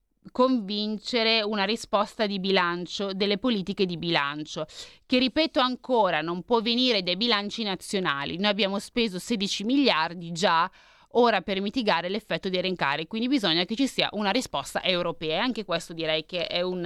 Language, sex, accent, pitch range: Italian, female, native, 170-215 Hz